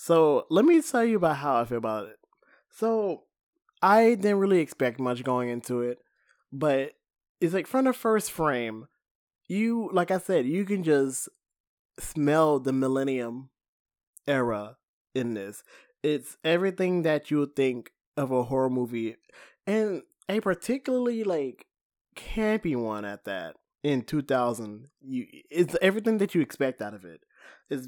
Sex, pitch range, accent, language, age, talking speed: male, 130-195 Hz, American, English, 20-39, 145 wpm